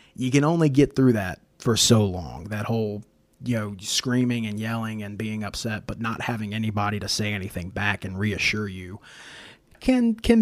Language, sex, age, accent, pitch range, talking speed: English, male, 30-49, American, 105-145 Hz, 185 wpm